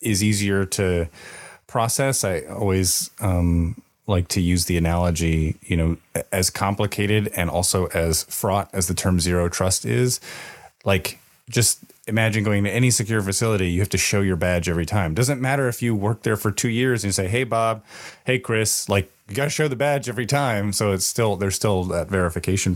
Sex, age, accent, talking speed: male, 30-49, American, 195 wpm